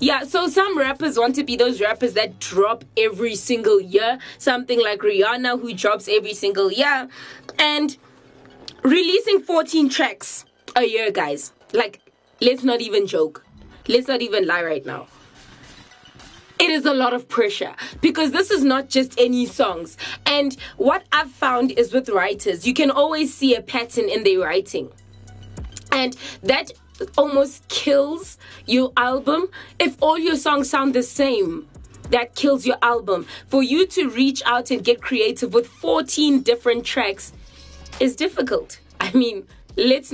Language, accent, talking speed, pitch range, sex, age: English, South African, 155 wpm, 235-300 Hz, female, 20-39